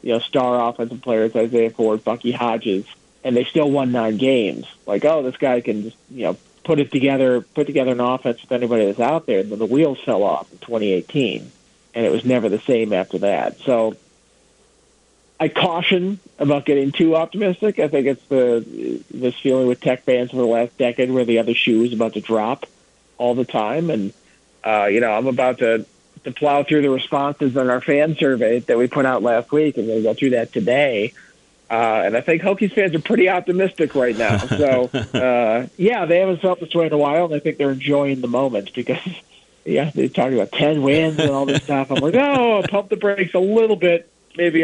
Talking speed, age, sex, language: 215 wpm, 40-59, male, English